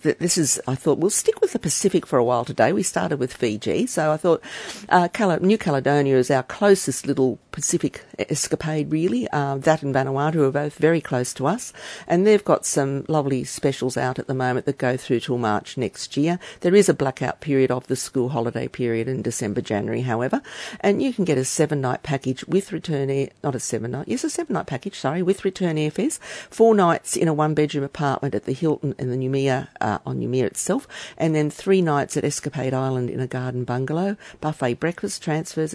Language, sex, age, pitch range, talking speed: English, female, 50-69, 130-165 Hz, 210 wpm